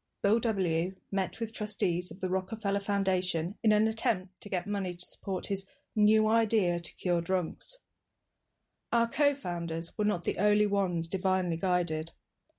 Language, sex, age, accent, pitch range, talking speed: English, female, 40-59, British, 180-225 Hz, 155 wpm